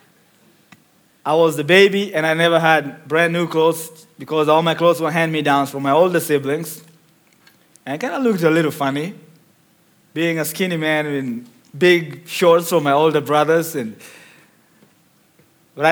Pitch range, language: 155-180 Hz, English